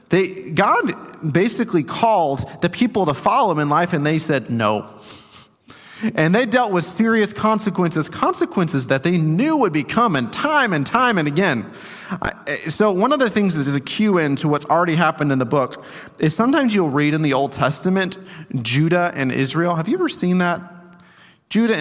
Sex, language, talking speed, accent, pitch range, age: male, English, 180 wpm, American, 150-200 Hz, 30-49